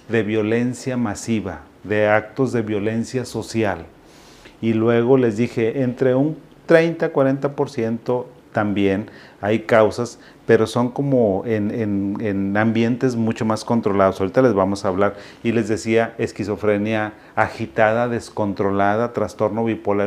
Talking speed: 125 wpm